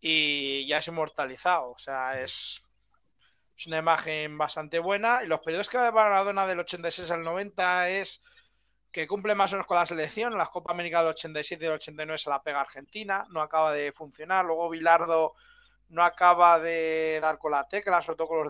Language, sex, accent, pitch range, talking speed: Spanish, male, Spanish, 150-175 Hz, 200 wpm